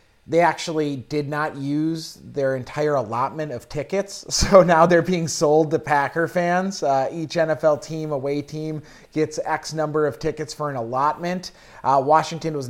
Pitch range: 140-165 Hz